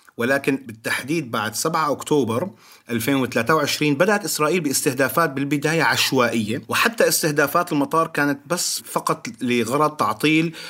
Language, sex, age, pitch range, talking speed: Arabic, male, 30-49, 120-160 Hz, 105 wpm